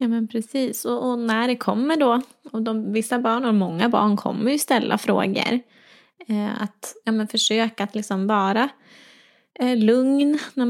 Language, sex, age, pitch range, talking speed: Swedish, female, 20-39, 205-245 Hz, 140 wpm